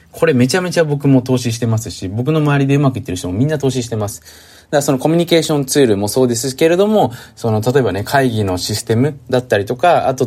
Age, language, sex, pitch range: 20-39, Japanese, male, 110-150 Hz